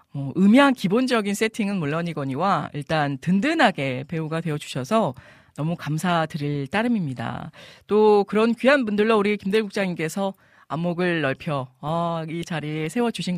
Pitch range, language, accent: 155-225 Hz, Korean, native